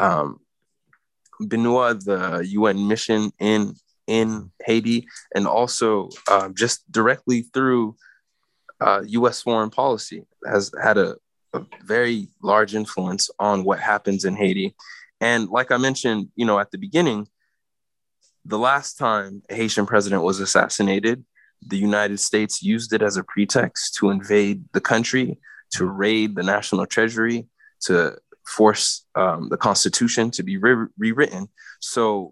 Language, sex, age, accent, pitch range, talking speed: English, male, 20-39, American, 100-120 Hz, 135 wpm